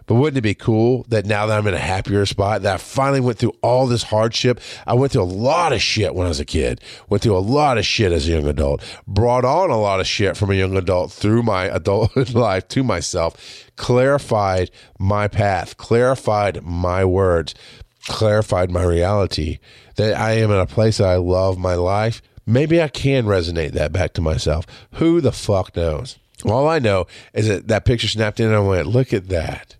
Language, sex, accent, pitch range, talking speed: English, male, American, 90-110 Hz, 215 wpm